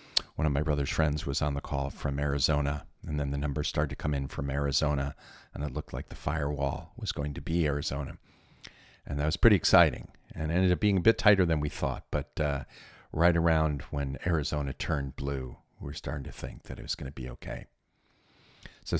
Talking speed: 215 wpm